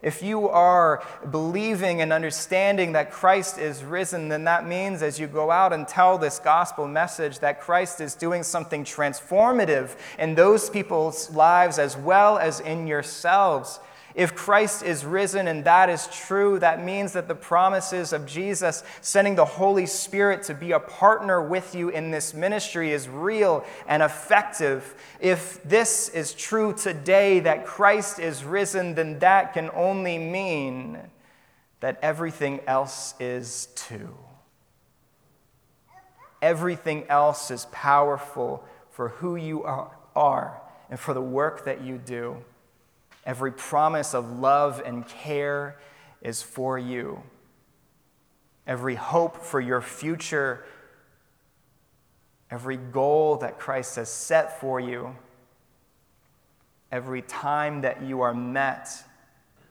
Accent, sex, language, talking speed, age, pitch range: American, male, English, 130 wpm, 30-49, 135-180 Hz